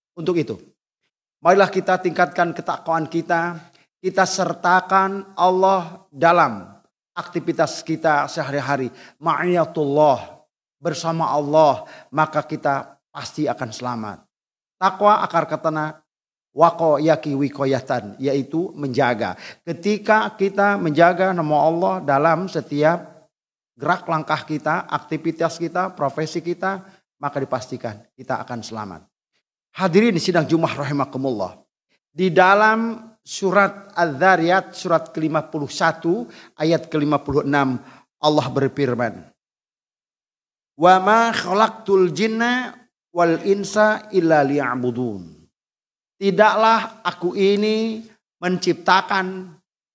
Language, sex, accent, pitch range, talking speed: Indonesian, male, native, 150-190 Hz, 90 wpm